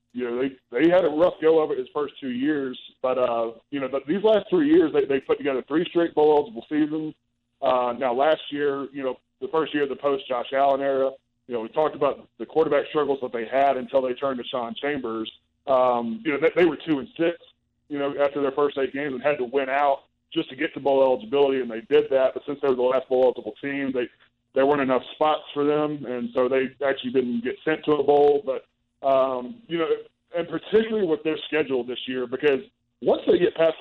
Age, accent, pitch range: 20-39, American, 130-155 Hz